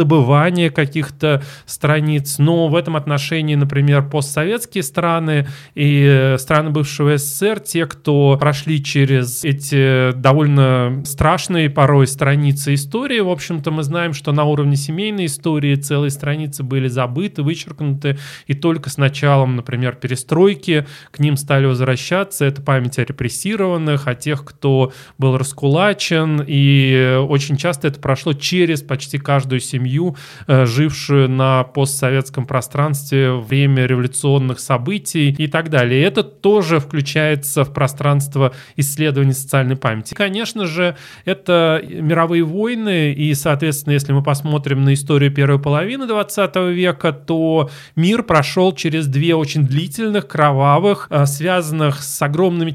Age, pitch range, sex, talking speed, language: 20-39, 140-165 Hz, male, 125 wpm, Russian